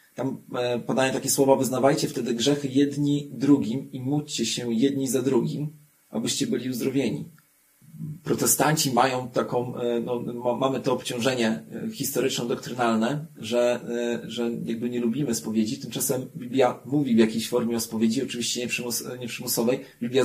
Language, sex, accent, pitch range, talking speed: Polish, male, native, 120-145 Hz, 125 wpm